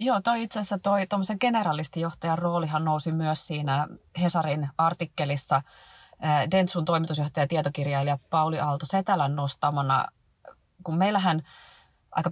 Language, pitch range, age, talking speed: Finnish, 145-180 Hz, 30-49, 105 wpm